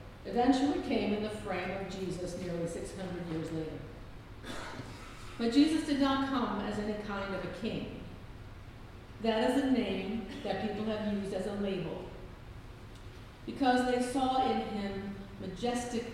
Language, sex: English, female